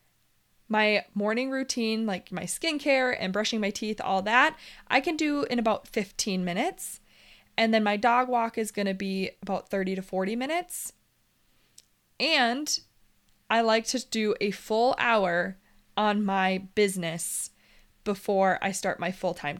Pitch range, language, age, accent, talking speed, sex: 195-245 Hz, English, 20-39, American, 150 wpm, female